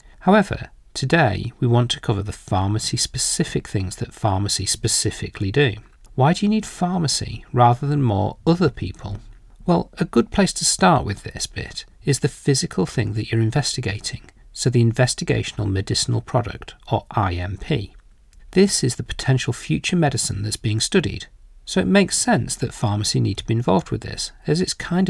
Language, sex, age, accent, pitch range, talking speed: English, male, 40-59, British, 105-145 Hz, 165 wpm